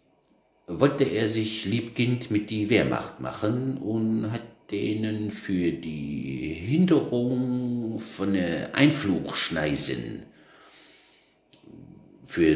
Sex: male